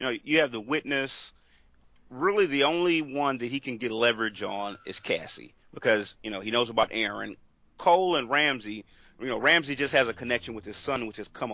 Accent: American